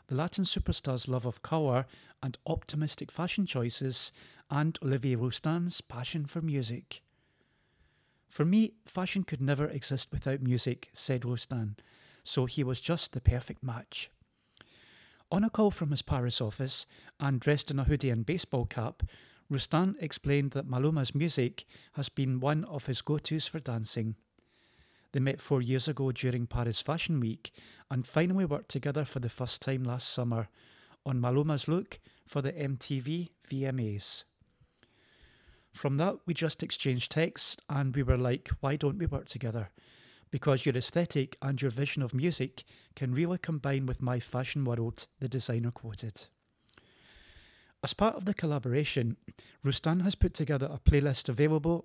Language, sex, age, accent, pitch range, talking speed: English, male, 40-59, British, 125-150 Hz, 155 wpm